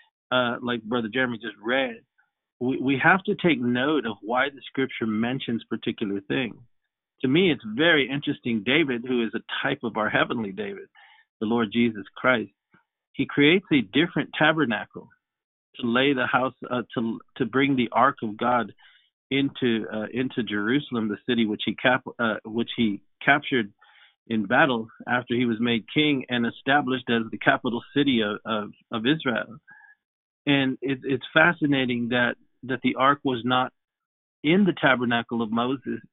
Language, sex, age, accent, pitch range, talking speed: English, male, 50-69, American, 115-140 Hz, 165 wpm